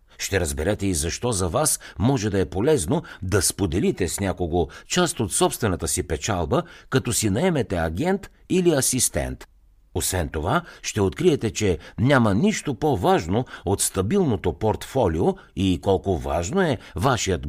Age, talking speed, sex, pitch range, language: 60-79, 140 wpm, male, 85-130 Hz, Bulgarian